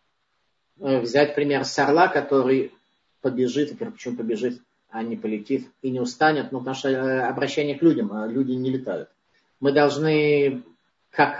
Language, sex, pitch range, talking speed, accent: Russian, male, 130-155 Hz, 140 wpm, native